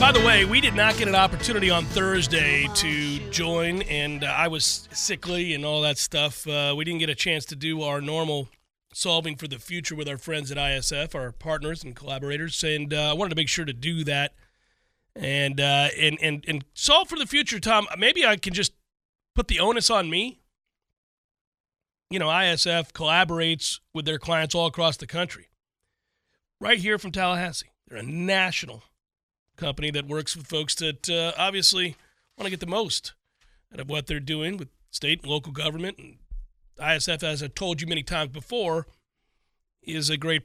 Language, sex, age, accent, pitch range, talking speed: English, male, 30-49, American, 150-190 Hz, 190 wpm